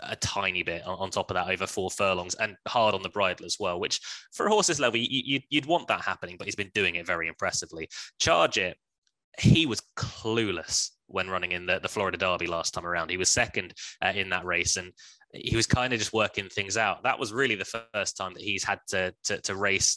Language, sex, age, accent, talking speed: English, male, 20-39, British, 230 wpm